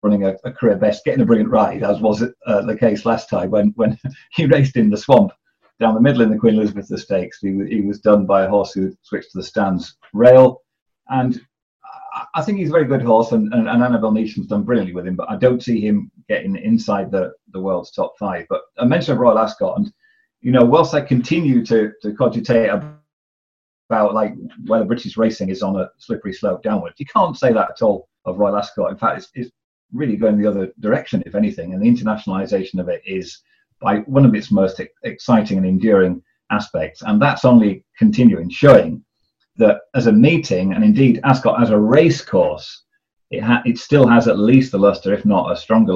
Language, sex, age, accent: English, male, 40-59, British